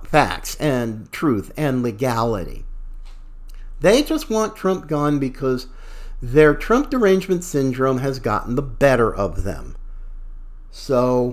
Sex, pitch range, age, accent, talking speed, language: male, 120-170 Hz, 50-69, American, 115 wpm, English